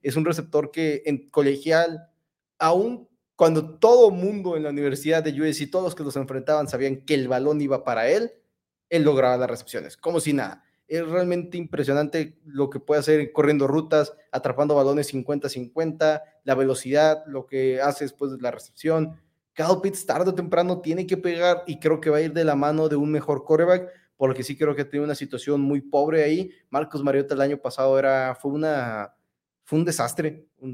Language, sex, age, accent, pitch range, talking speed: Spanish, male, 20-39, Mexican, 140-170 Hz, 190 wpm